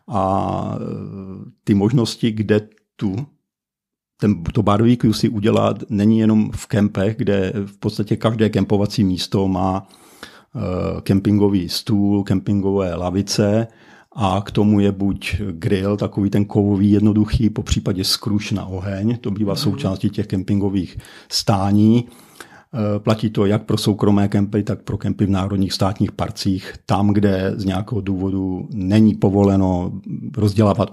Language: Czech